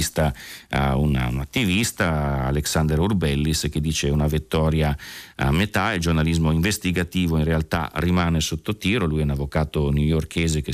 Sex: male